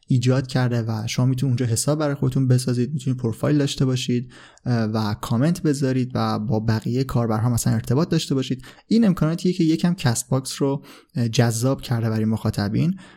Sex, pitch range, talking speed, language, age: male, 120-145 Hz, 165 wpm, Persian, 20-39